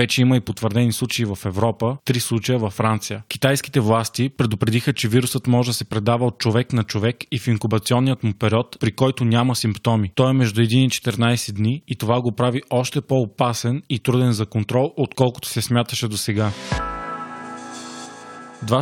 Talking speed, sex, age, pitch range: 175 wpm, male, 20-39, 110-125 Hz